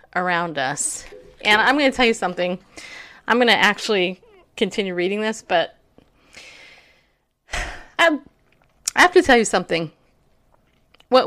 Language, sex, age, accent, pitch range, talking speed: English, female, 30-49, American, 175-225 Hz, 135 wpm